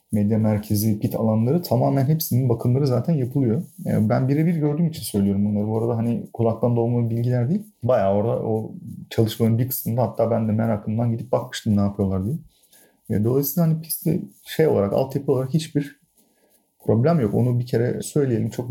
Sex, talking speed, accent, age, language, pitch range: male, 170 wpm, native, 40-59, Turkish, 110-140 Hz